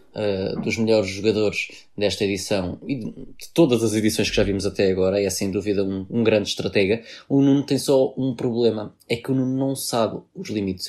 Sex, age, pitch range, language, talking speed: male, 20-39, 105-120 Hz, Portuguese, 210 wpm